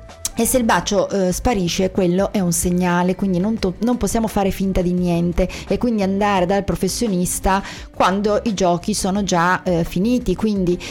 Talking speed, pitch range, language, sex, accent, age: 170 wpm, 175-215 Hz, Italian, female, native, 30-49